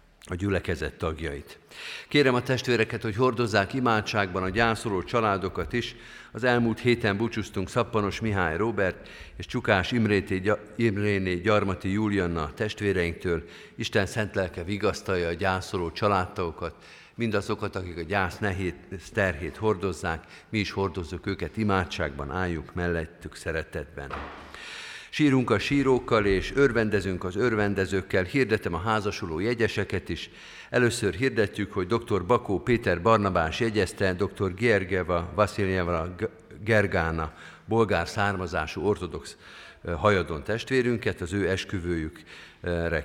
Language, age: Hungarian, 50-69